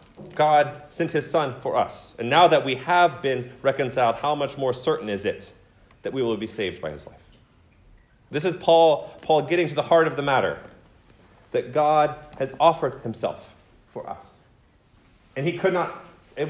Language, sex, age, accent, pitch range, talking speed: English, male, 30-49, American, 130-165 Hz, 180 wpm